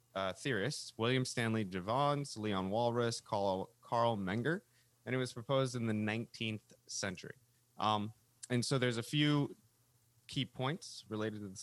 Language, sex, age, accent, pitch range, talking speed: English, male, 20-39, American, 105-135 Hz, 145 wpm